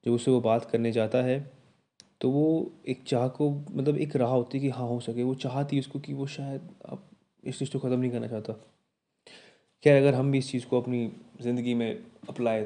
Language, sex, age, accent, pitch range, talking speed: Hindi, male, 20-39, native, 115-130 Hz, 220 wpm